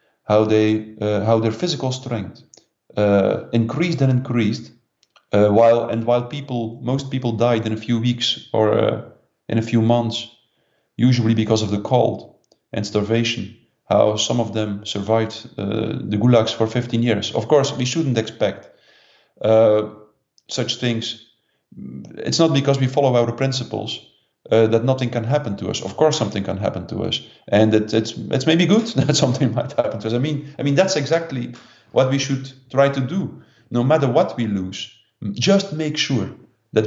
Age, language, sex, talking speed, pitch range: 40-59, English, male, 175 wpm, 110-130 Hz